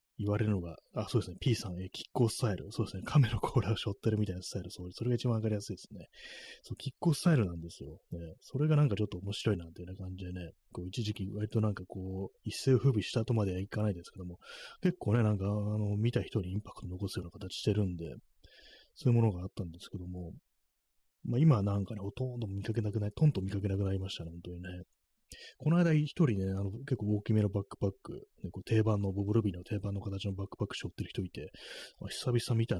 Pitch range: 95-120 Hz